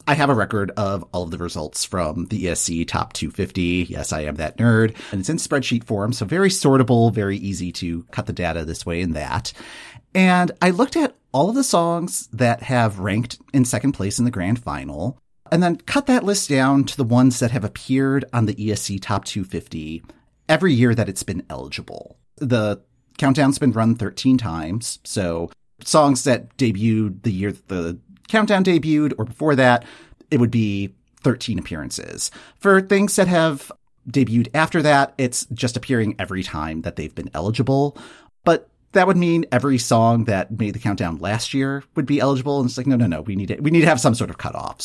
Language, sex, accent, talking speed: English, male, American, 200 wpm